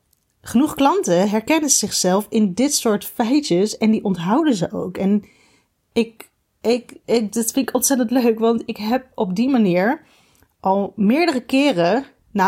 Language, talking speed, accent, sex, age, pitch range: Dutch, 155 wpm, Dutch, female, 30-49, 205-260 Hz